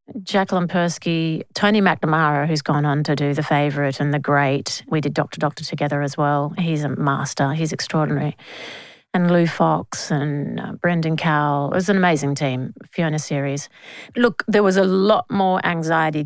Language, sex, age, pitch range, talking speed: English, female, 40-59, 145-200 Hz, 170 wpm